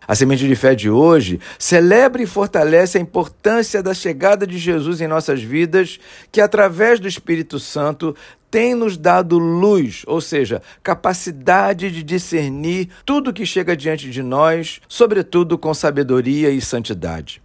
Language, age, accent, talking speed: Portuguese, 50-69, Brazilian, 150 wpm